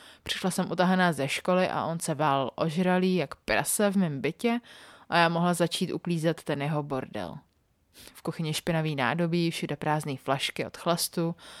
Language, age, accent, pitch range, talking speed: Czech, 30-49, native, 145-185 Hz, 165 wpm